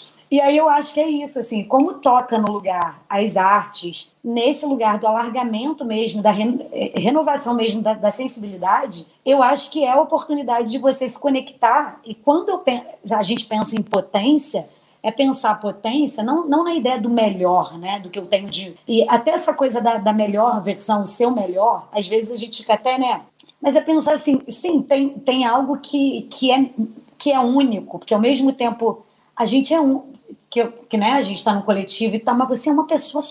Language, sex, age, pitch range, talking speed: Portuguese, female, 20-39, 205-260 Hz, 205 wpm